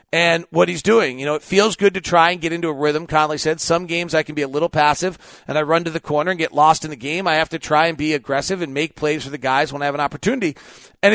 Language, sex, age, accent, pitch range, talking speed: English, male, 40-59, American, 145-180 Hz, 305 wpm